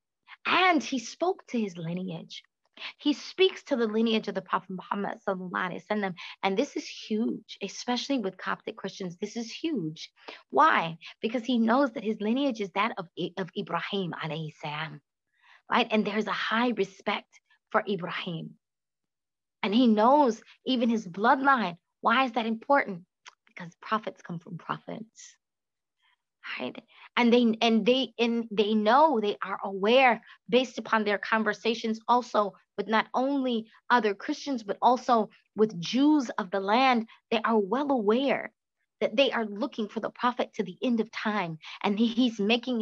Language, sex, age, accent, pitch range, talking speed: English, female, 20-39, American, 200-255 Hz, 155 wpm